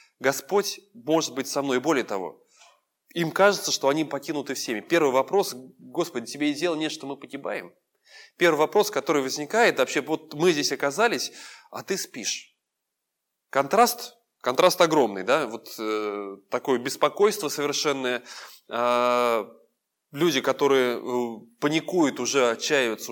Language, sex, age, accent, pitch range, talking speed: Russian, male, 20-39, native, 120-160 Hz, 130 wpm